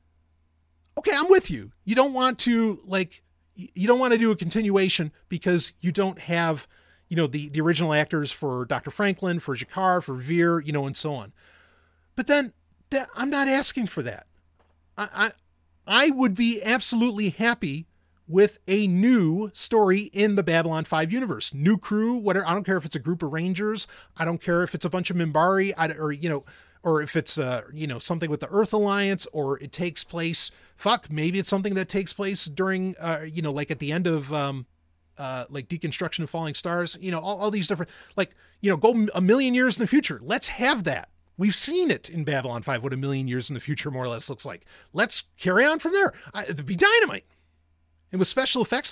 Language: English